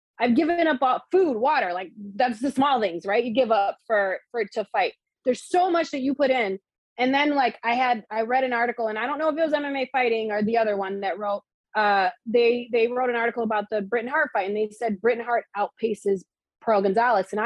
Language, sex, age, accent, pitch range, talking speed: English, female, 20-39, American, 220-280 Hz, 240 wpm